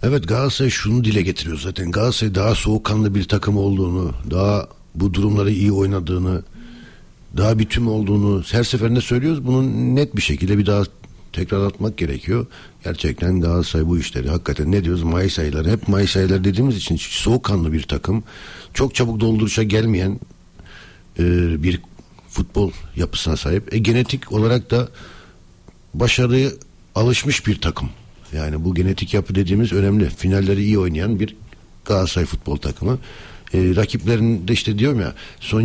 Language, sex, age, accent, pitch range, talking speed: Turkish, male, 60-79, native, 90-120 Hz, 140 wpm